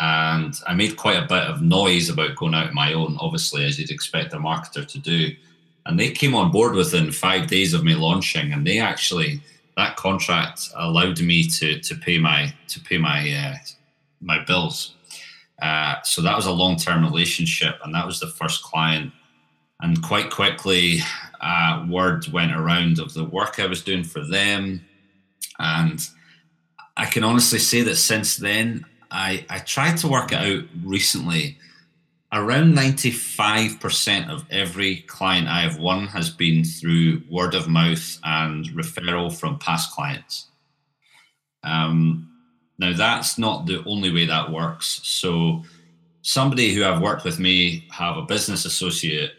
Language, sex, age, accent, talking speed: English, male, 30-49, British, 165 wpm